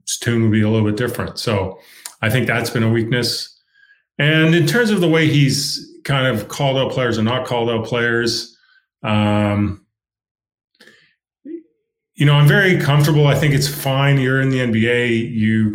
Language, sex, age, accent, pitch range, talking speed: English, male, 30-49, American, 110-145 Hz, 175 wpm